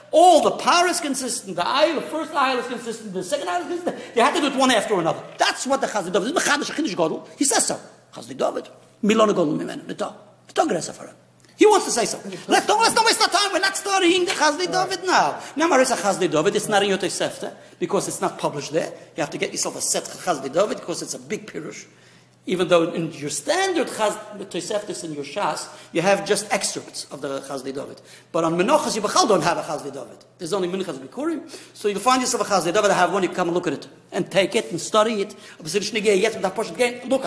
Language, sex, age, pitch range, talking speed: English, male, 50-69, 190-290 Hz, 235 wpm